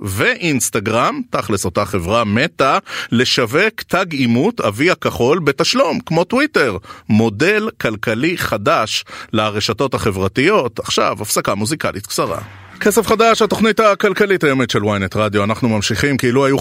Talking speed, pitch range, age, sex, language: 125 wpm, 105-140 Hz, 30-49, male, Hebrew